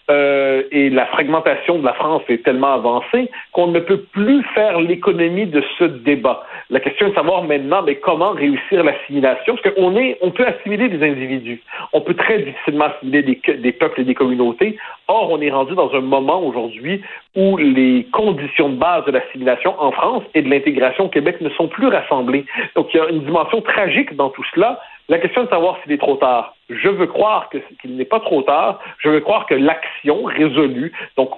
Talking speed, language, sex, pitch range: 205 wpm, French, male, 140-205 Hz